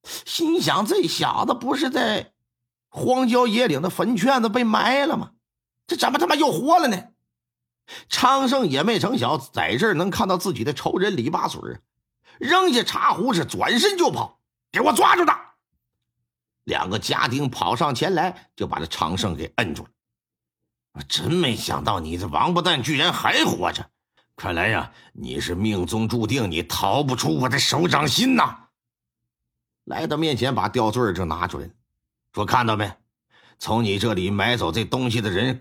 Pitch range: 95-160 Hz